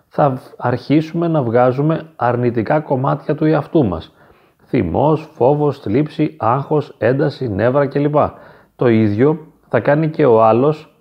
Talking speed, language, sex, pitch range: 125 wpm, Greek, male, 115-160 Hz